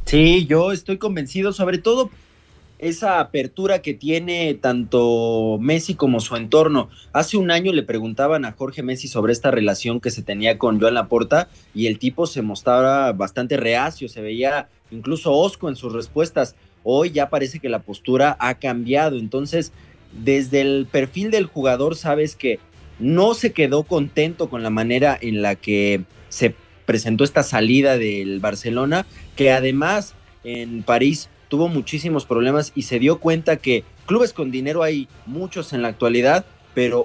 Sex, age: male, 30-49